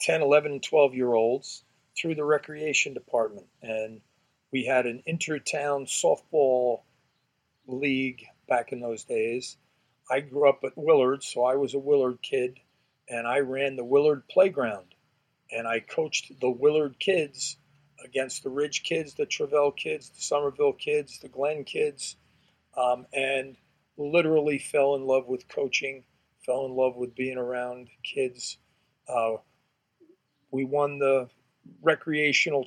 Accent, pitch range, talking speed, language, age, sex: American, 125-150 Hz, 140 wpm, English, 40-59, male